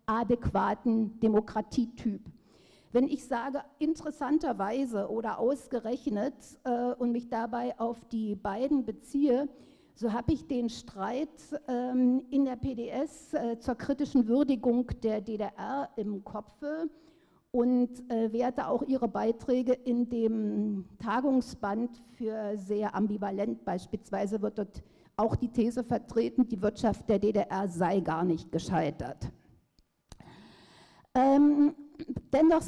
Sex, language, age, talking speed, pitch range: female, German, 50-69, 110 wpm, 220-270 Hz